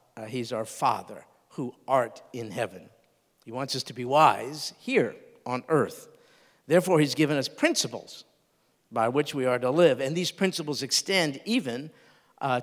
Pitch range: 130-180 Hz